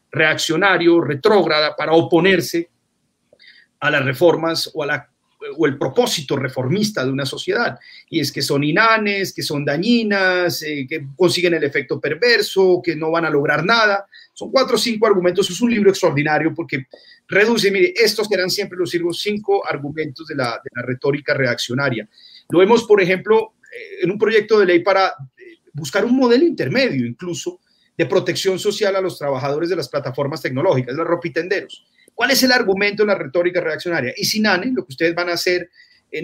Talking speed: 175 wpm